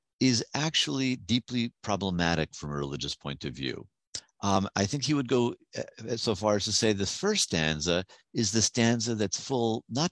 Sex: male